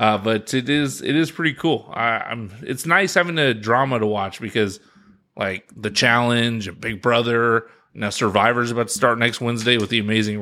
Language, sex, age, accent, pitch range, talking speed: English, male, 20-39, American, 115-155 Hz, 195 wpm